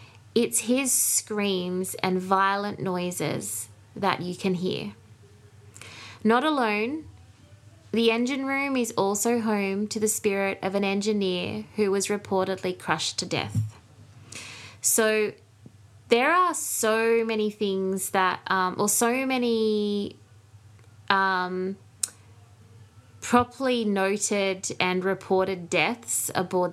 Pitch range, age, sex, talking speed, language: 150-200 Hz, 20-39, female, 110 wpm, English